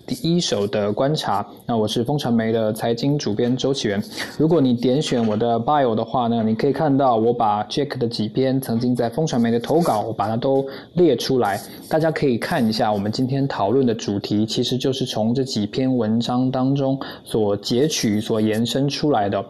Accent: native